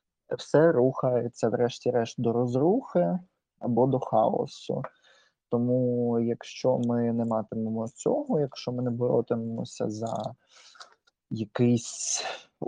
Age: 20-39